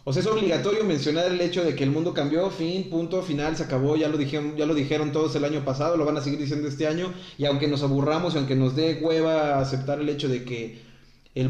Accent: Mexican